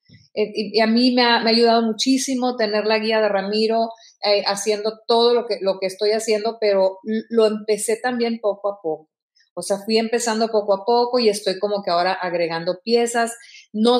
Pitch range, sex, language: 190-230 Hz, female, Spanish